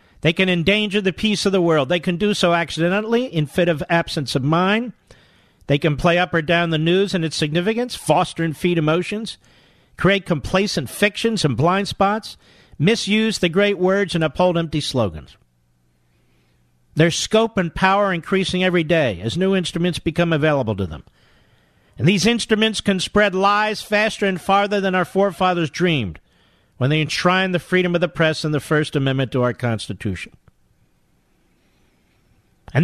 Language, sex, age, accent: English, male, 50-69, American